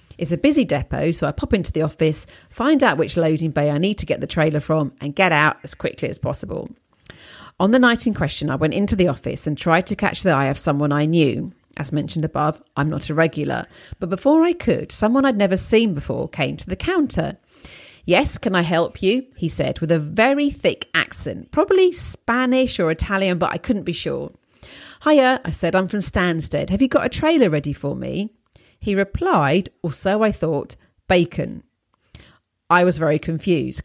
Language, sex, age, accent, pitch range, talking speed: English, female, 40-59, British, 155-220 Hz, 205 wpm